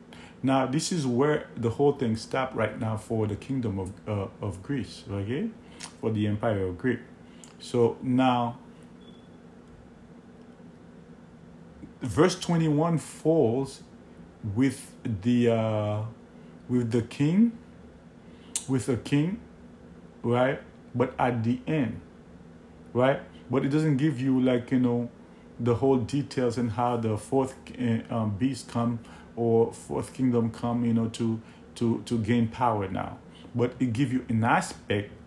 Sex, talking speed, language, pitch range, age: male, 140 wpm, English, 110-135 Hz, 50-69